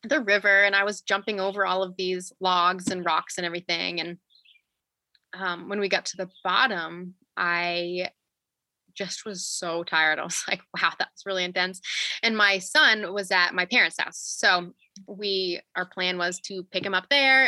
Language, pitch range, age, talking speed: English, 180-205 Hz, 20-39, 180 wpm